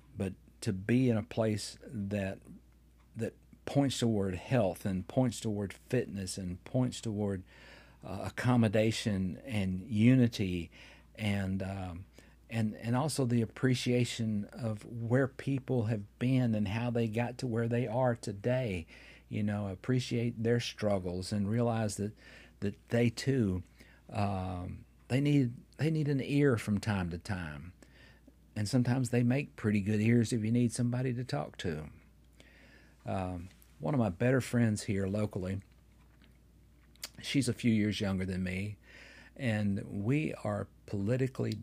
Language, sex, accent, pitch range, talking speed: English, male, American, 95-120 Hz, 140 wpm